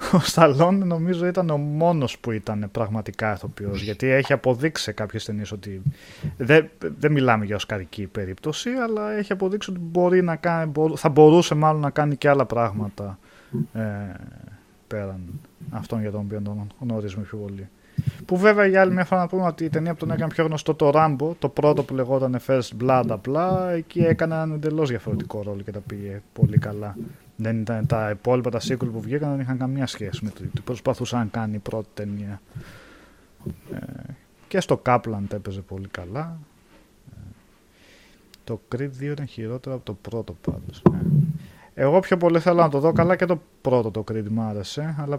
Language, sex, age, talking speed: Greek, male, 20-39, 185 wpm